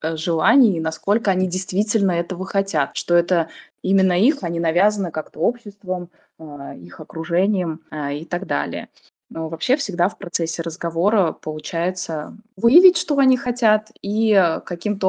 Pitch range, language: 170-210 Hz, Russian